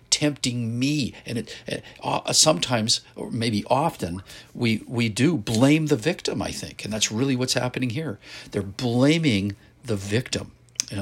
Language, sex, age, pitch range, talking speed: English, male, 50-69, 100-125 Hz, 160 wpm